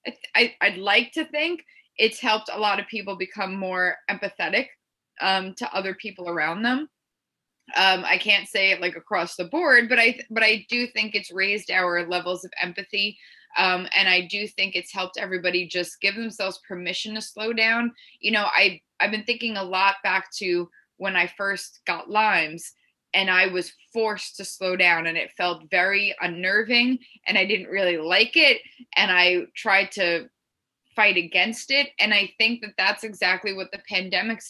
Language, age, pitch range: English, 20-39, 180-215 Hz